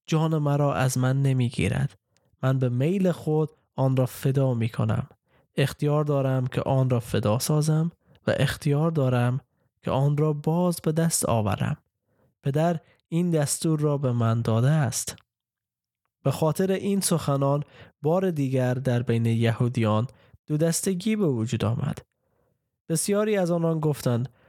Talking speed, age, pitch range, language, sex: 135 wpm, 20-39, 125-155 Hz, Persian, male